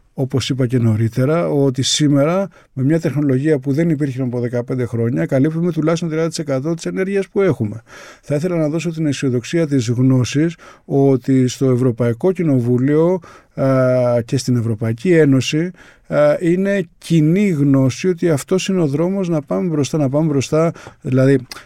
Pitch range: 130-150 Hz